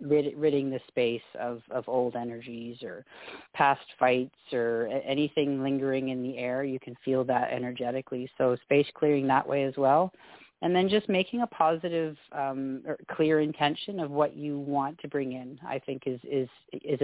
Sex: female